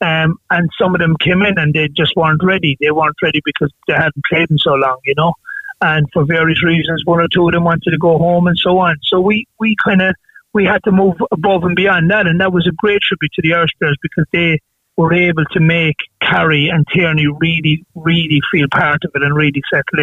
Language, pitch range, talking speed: English, 160-185 Hz, 240 wpm